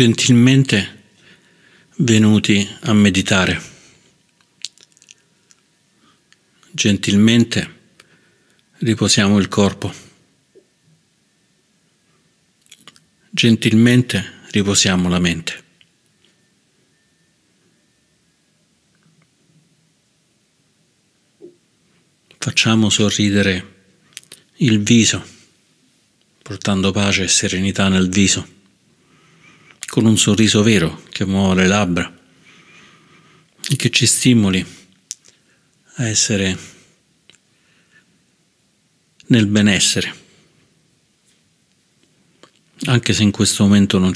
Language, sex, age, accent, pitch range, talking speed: Italian, male, 50-69, native, 95-115 Hz, 60 wpm